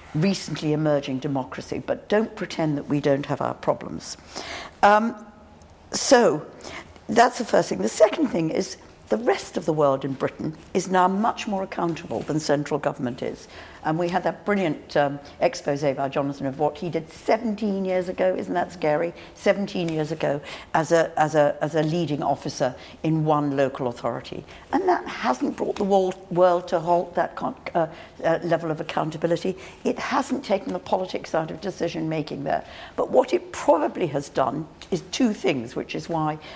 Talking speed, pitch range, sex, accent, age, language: 175 wpm, 150-185 Hz, female, British, 60-79, English